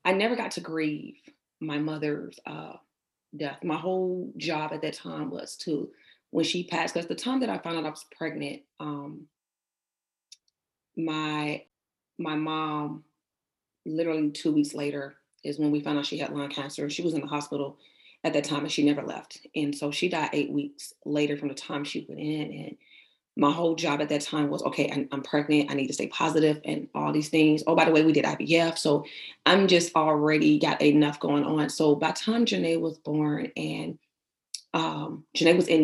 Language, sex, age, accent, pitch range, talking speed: English, female, 30-49, American, 145-160 Hz, 200 wpm